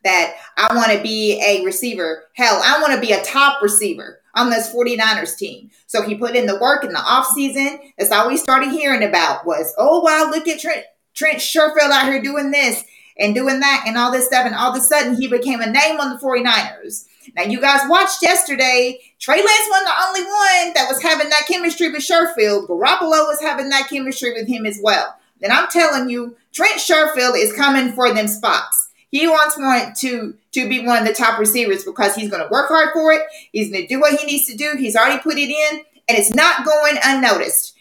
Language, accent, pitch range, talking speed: English, American, 235-310 Hz, 220 wpm